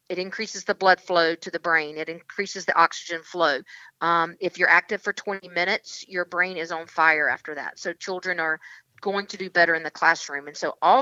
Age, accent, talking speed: 40-59, American, 220 wpm